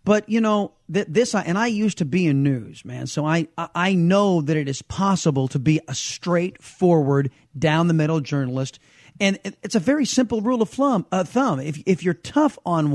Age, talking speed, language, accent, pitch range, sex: 40-59, 205 wpm, English, American, 140-185 Hz, male